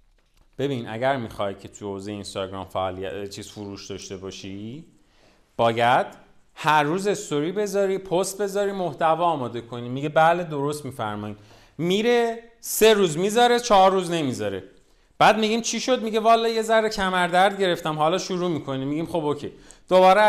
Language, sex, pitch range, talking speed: Persian, male, 120-185 Hz, 150 wpm